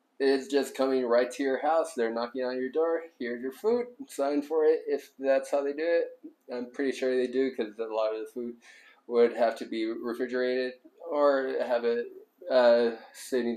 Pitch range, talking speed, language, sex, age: 120-155 Hz, 200 wpm, English, male, 20-39